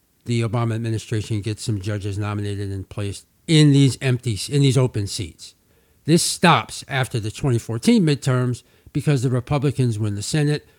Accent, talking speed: American, 155 wpm